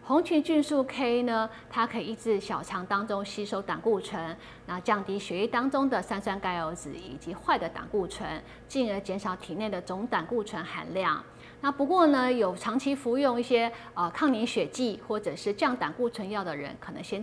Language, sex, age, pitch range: Chinese, female, 30-49, 190-255 Hz